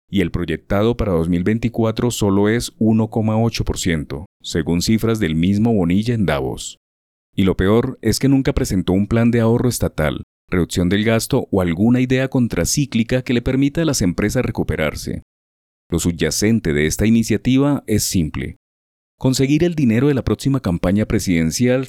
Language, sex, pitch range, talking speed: Spanish, male, 85-125 Hz, 155 wpm